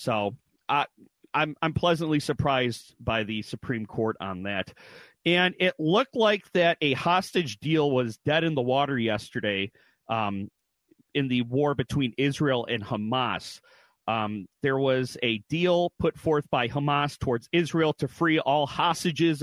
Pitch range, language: 125-160 Hz, English